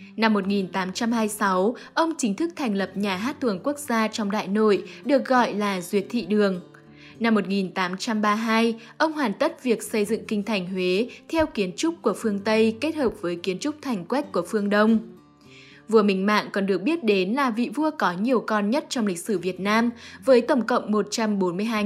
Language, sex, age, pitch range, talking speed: Vietnamese, female, 20-39, 195-240 Hz, 195 wpm